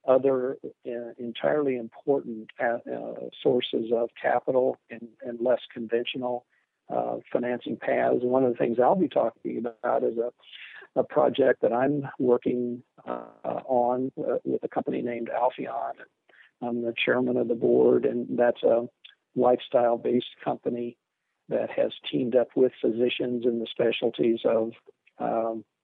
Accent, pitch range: American, 115-130 Hz